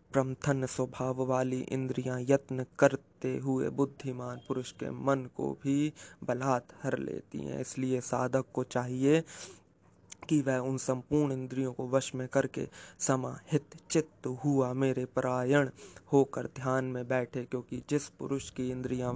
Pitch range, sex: 125-135 Hz, male